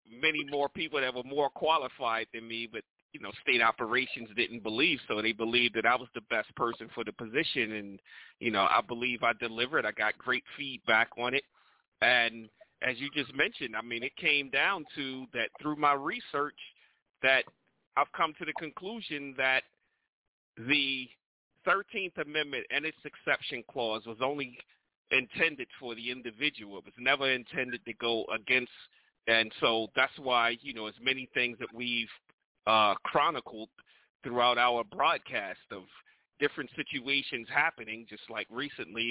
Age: 40-59